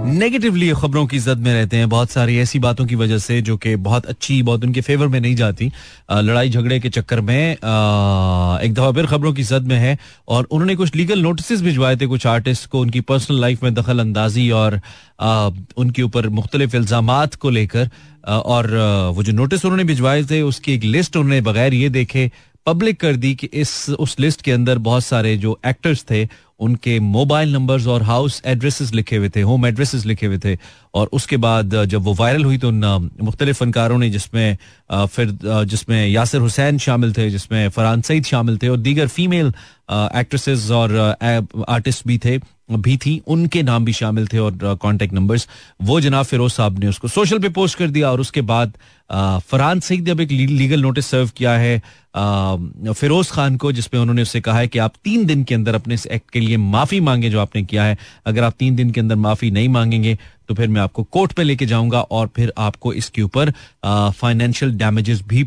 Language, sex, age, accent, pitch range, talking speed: Hindi, male, 30-49, native, 110-135 Hz, 200 wpm